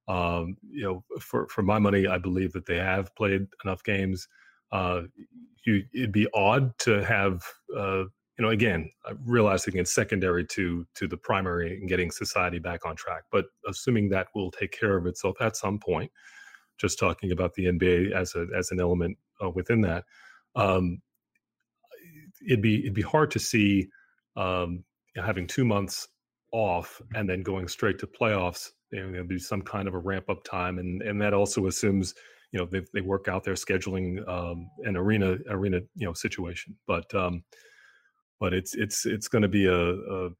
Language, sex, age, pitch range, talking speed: English, male, 30-49, 90-105 Hz, 190 wpm